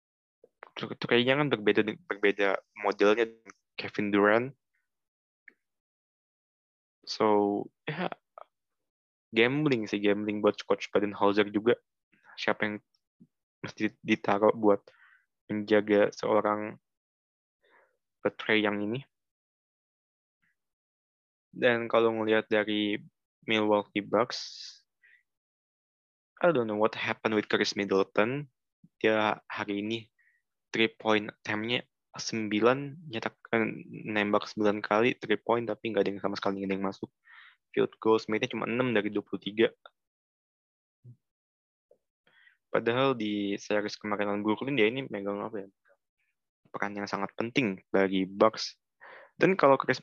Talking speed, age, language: 105 wpm, 20-39, Indonesian